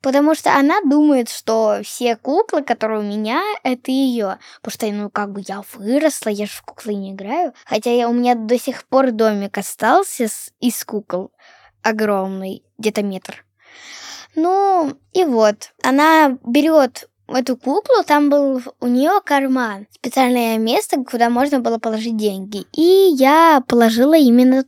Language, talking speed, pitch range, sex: Russian, 150 wpm, 225-295 Hz, female